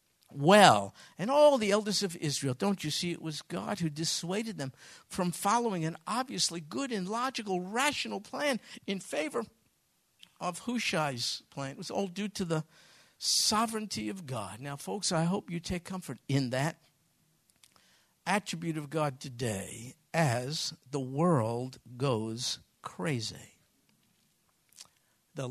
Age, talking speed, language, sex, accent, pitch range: 60-79, 135 wpm, English, male, American, 140-195 Hz